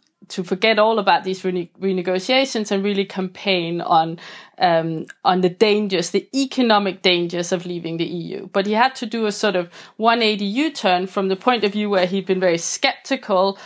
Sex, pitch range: female, 180-210 Hz